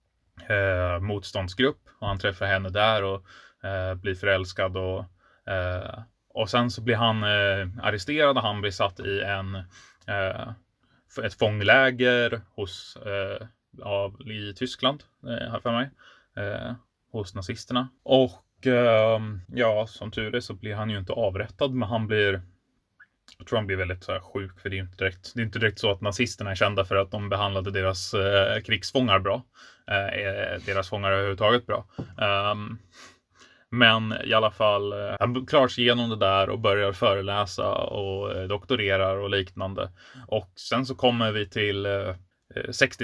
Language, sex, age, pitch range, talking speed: Swedish, male, 20-39, 95-115 Hz, 160 wpm